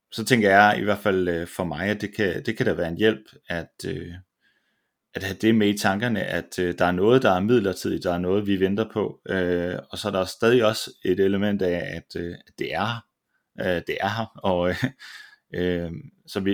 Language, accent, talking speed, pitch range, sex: Danish, native, 200 wpm, 90-110 Hz, male